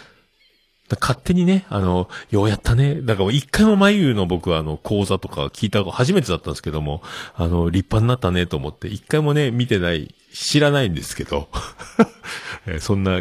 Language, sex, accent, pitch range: Japanese, male, native, 85-140 Hz